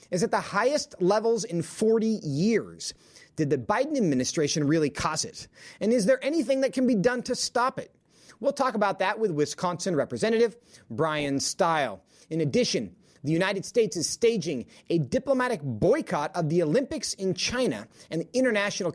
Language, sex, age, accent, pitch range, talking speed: English, male, 30-49, American, 165-245 Hz, 170 wpm